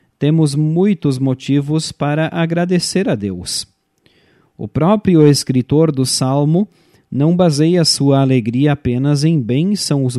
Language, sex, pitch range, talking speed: Portuguese, male, 130-160 Hz, 110 wpm